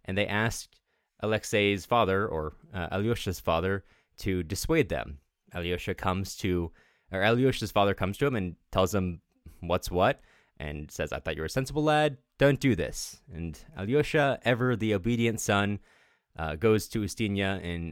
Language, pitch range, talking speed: English, 90-120 Hz, 165 wpm